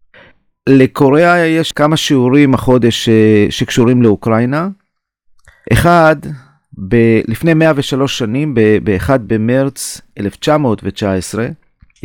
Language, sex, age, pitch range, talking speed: Hebrew, male, 40-59, 105-130 Hz, 80 wpm